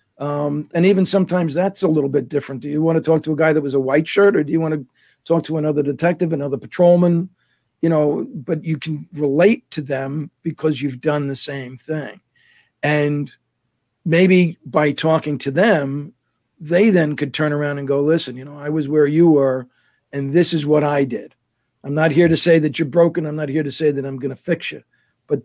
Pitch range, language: 145-165 Hz, English